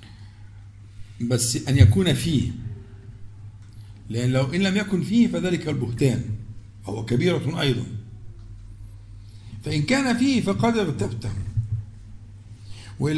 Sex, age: male, 50-69